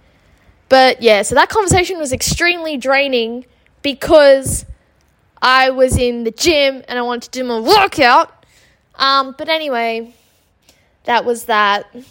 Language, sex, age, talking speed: English, female, 10-29, 135 wpm